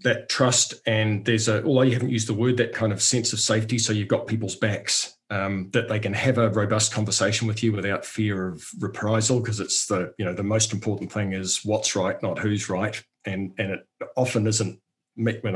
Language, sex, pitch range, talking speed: English, male, 110-130 Hz, 225 wpm